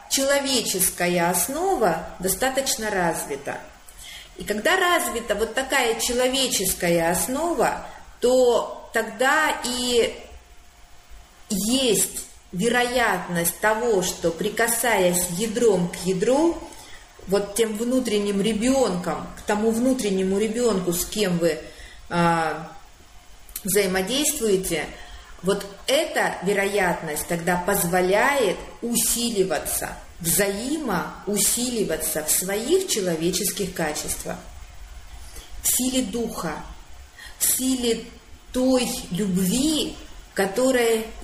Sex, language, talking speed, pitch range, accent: female, Russian, 75 wpm, 175-250 Hz, native